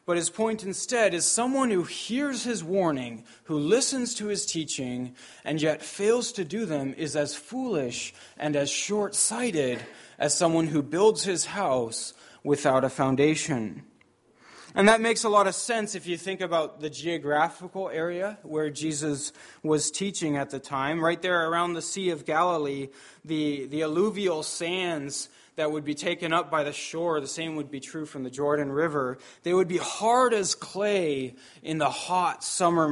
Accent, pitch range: American, 145-195 Hz